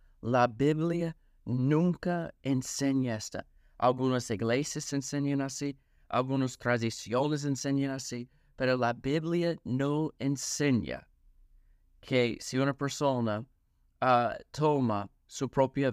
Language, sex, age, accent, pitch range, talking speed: Spanish, male, 30-49, American, 115-145 Hz, 100 wpm